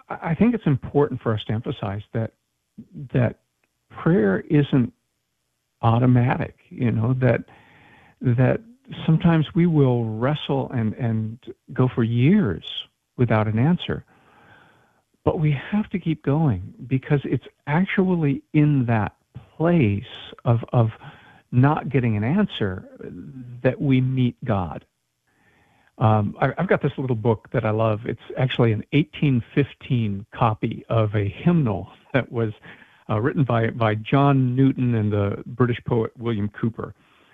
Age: 50-69